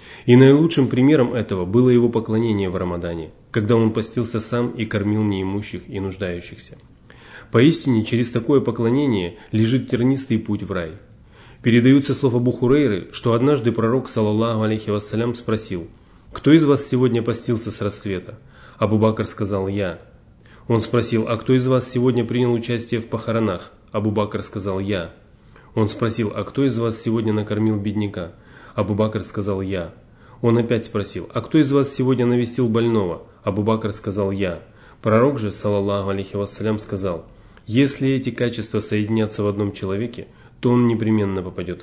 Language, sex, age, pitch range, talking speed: Russian, male, 30-49, 105-120 Hz, 150 wpm